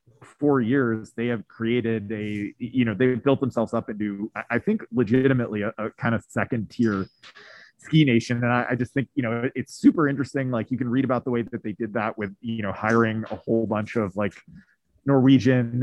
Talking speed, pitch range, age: 210 wpm, 105-130 Hz, 20-39